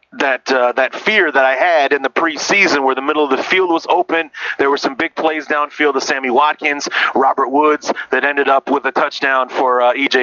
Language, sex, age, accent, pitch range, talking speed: English, male, 30-49, American, 125-160 Hz, 225 wpm